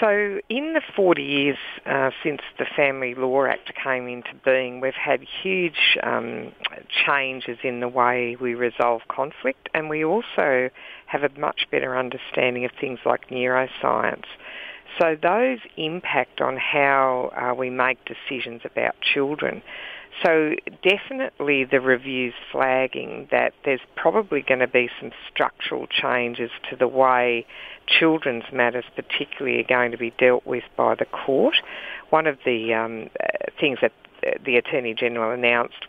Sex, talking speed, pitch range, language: female, 145 wpm, 125-145 Hz, English